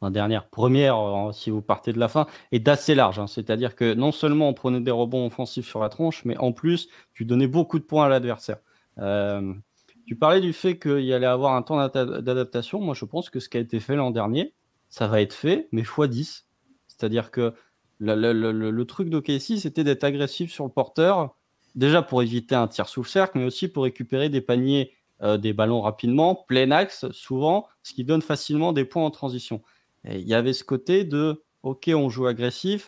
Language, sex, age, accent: French, male, 20-39, French